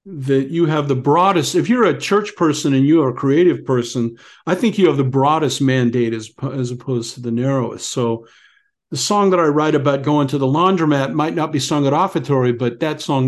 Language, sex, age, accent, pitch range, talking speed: English, male, 50-69, American, 135-175 Hz, 220 wpm